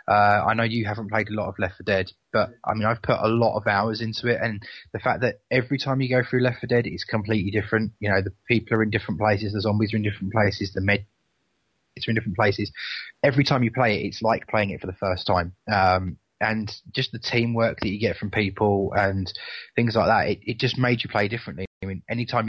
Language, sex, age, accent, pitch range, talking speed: English, male, 20-39, British, 100-120 Hz, 255 wpm